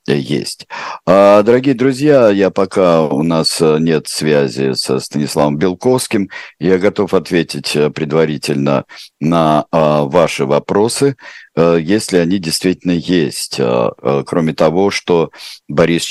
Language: Russian